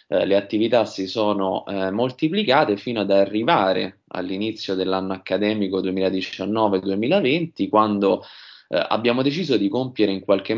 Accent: native